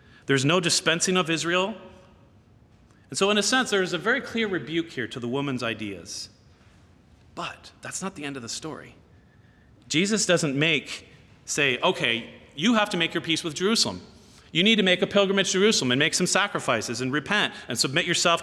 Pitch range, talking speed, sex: 120-185 Hz, 190 wpm, male